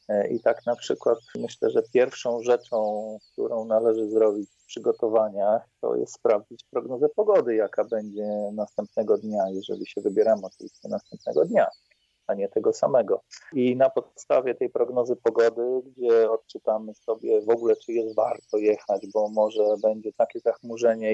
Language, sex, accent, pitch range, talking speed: Polish, male, native, 110-150 Hz, 150 wpm